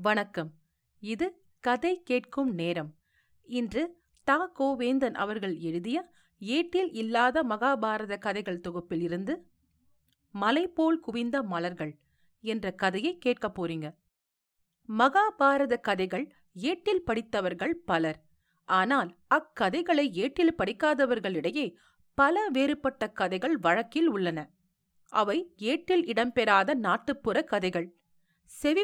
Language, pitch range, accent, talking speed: Tamil, 195-300 Hz, native, 90 wpm